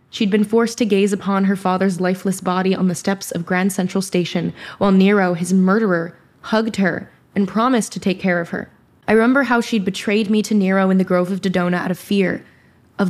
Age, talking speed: 10-29, 215 wpm